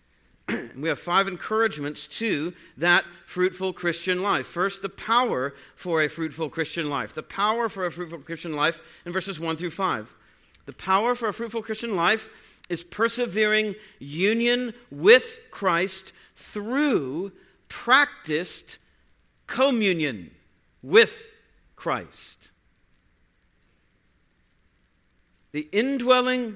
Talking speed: 110 wpm